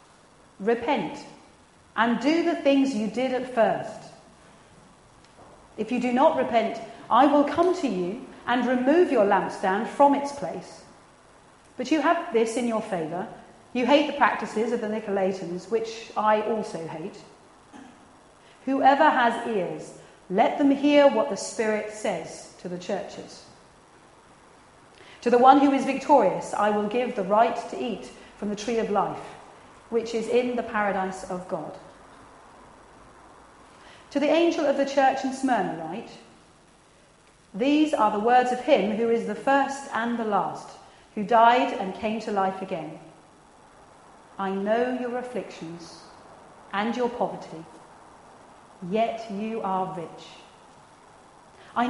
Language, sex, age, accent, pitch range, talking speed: English, female, 40-59, British, 205-270 Hz, 140 wpm